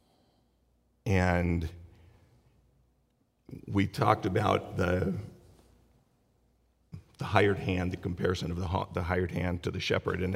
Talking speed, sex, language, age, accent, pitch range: 115 wpm, male, English, 50-69, American, 90-105 Hz